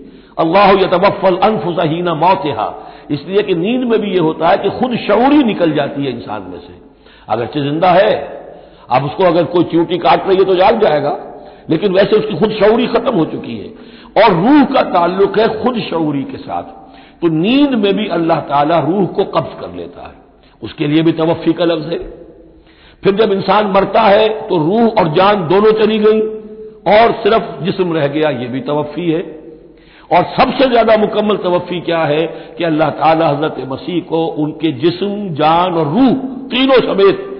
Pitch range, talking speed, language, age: 145-200 Hz, 180 wpm, Hindi, 60-79